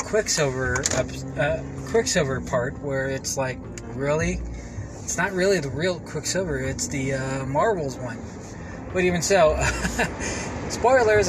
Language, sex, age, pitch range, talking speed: English, male, 20-39, 100-155 Hz, 130 wpm